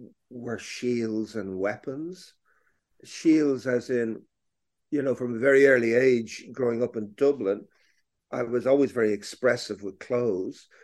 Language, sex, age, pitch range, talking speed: English, male, 50-69, 110-140 Hz, 140 wpm